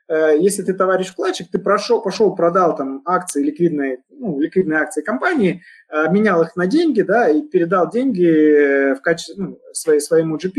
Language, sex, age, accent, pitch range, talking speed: Russian, male, 20-39, native, 155-210 Hz, 165 wpm